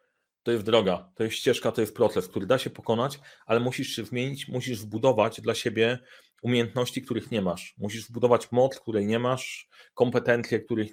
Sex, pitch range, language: male, 100-115 Hz, Polish